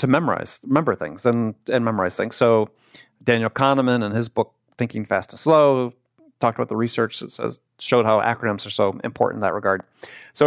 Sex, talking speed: male, 195 wpm